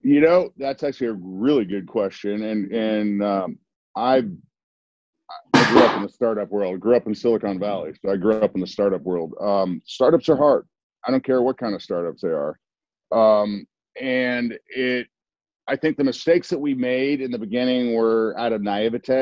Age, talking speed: 40-59, 195 wpm